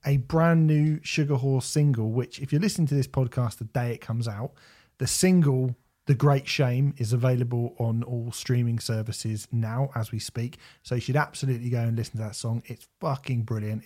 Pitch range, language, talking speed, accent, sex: 115-145 Hz, English, 200 wpm, British, male